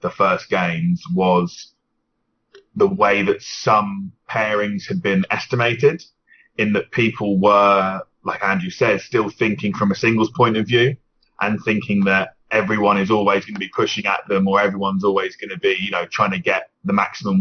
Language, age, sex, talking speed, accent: English, 20-39, male, 180 wpm, British